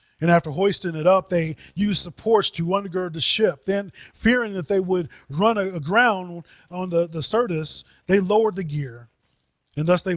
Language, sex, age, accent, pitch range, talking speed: English, male, 30-49, American, 150-200 Hz, 175 wpm